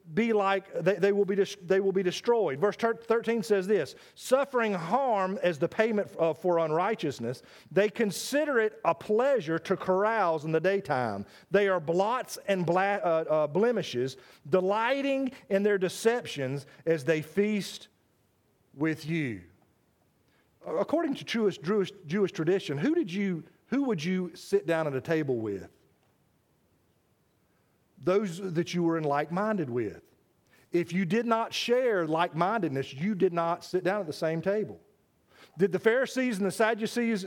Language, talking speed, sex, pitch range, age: English, 150 wpm, male, 165-215 Hz, 40-59